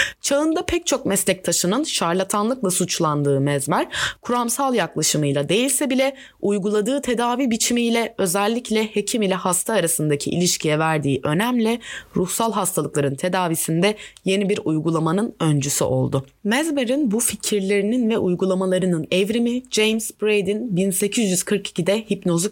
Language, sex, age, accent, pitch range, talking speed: Turkish, female, 20-39, native, 170-240 Hz, 105 wpm